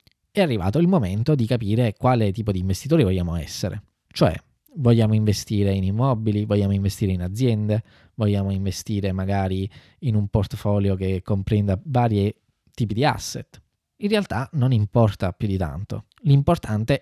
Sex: male